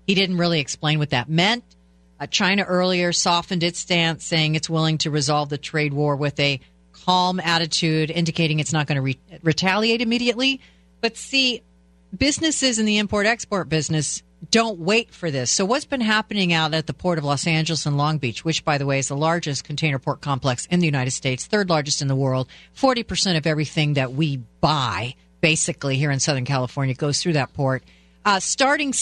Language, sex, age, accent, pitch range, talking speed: English, female, 40-59, American, 145-200 Hz, 190 wpm